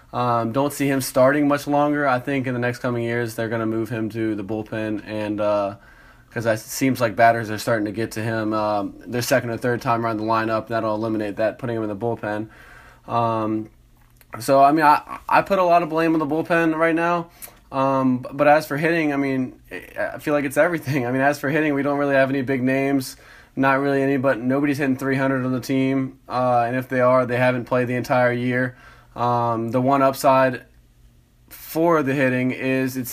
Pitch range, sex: 115-135 Hz, male